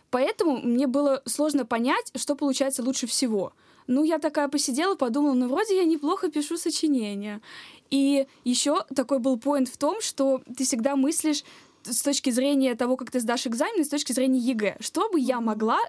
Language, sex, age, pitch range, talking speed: Russian, female, 20-39, 235-295 Hz, 175 wpm